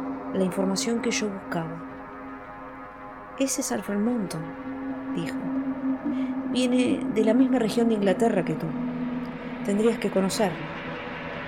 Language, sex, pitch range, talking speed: Spanish, female, 165-245 Hz, 115 wpm